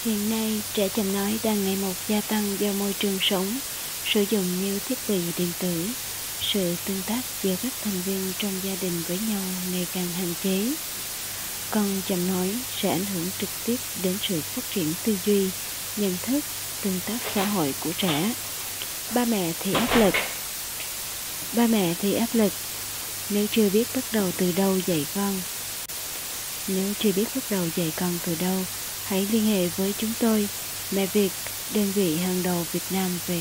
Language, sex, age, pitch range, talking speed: Vietnamese, female, 20-39, 180-210 Hz, 185 wpm